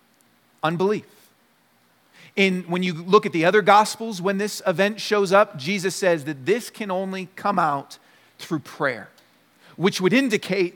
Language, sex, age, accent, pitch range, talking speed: English, male, 40-59, American, 170-215 Hz, 150 wpm